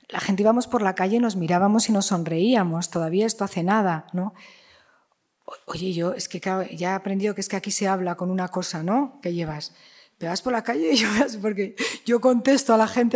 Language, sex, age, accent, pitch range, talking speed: Spanish, female, 40-59, Spanish, 205-270 Hz, 225 wpm